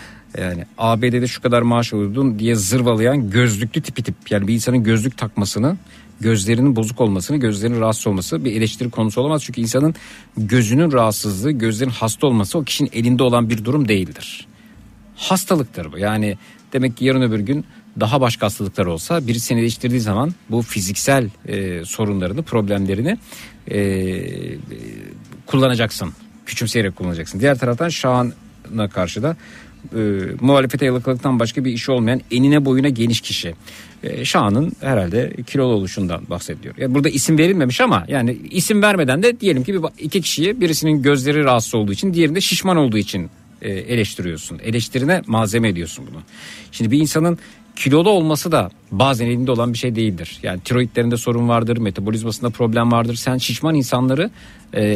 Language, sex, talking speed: Turkish, male, 150 wpm